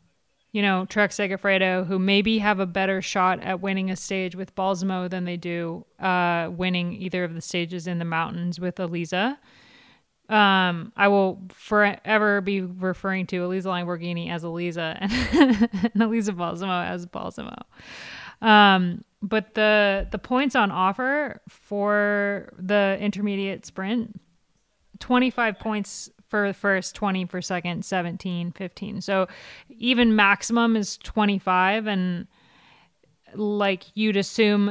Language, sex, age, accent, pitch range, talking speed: English, female, 20-39, American, 185-210 Hz, 130 wpm